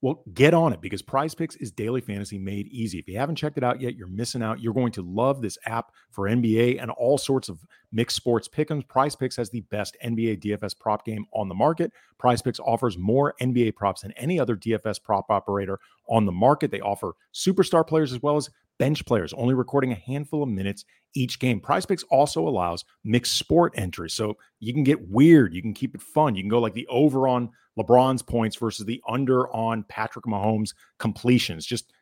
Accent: American